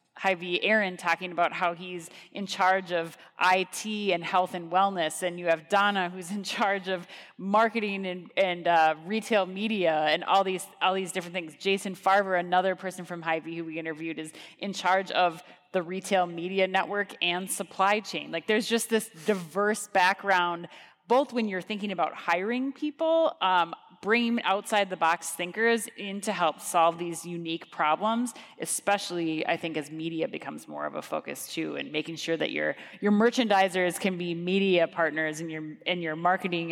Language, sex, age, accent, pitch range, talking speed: English, female, 30-49, American, 170-200 Hz, 175 wpm